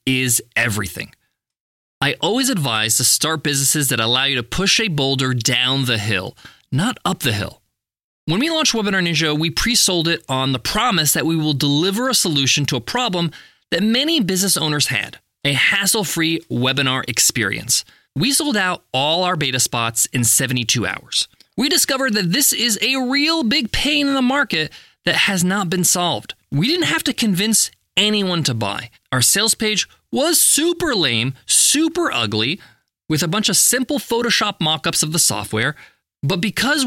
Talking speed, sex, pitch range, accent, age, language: 175 wpm, male, 130-210 Hz, American, 20-39, English